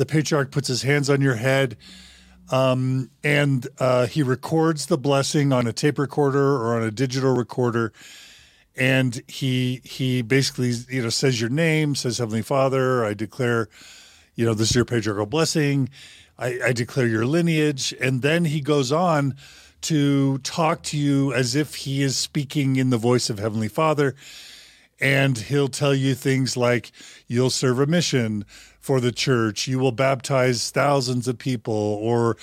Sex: male